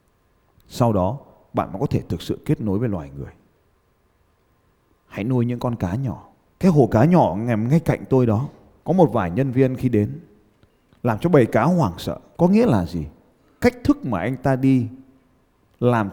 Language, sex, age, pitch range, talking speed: Vietnamese, male, 20-39, 110-160 Hz, 190 wpm